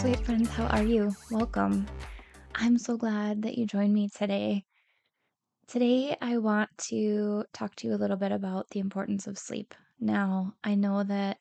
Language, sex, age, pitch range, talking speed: English, female, 10-29, 185-210 Hz, 175 wpm